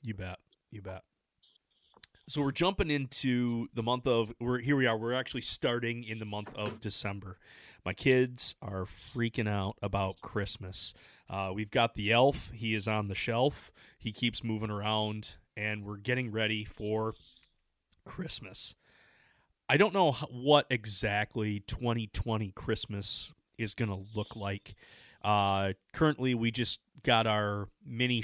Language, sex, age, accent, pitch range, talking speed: English, male, 30-49, American, 100-120 Hz, 145 wpm